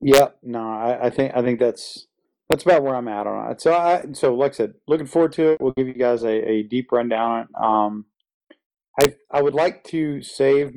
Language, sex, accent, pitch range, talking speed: English, male, American, 115-135 Hz, 230 wpm